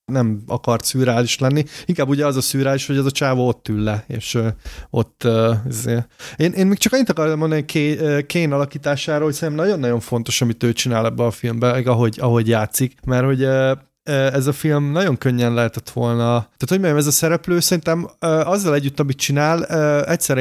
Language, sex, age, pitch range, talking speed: Hungarian, male, 30-49, 120-145 Hz, 180 wpm